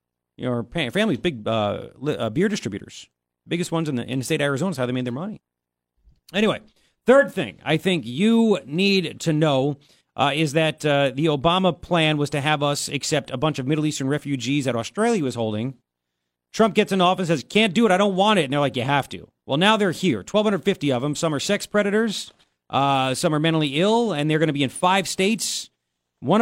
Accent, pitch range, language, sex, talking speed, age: American, 115-190 Hz, English, male, 220 wpm, 40-59